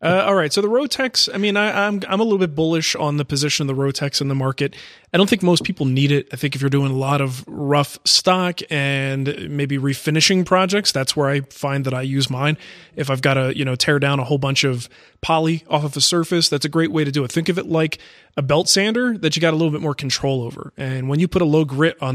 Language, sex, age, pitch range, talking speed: English, male, 30-49, 135-165 Hz, 270 wpm